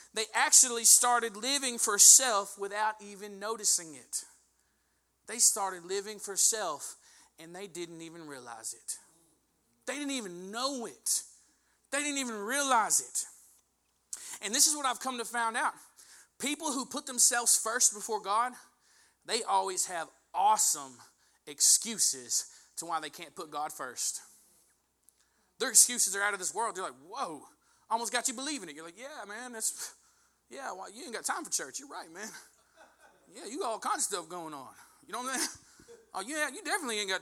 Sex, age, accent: male, 30-49, American